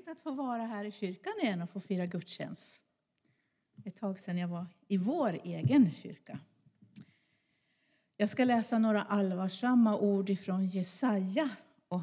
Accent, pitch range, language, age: native, 190-245 Hz, Swedish, 50-69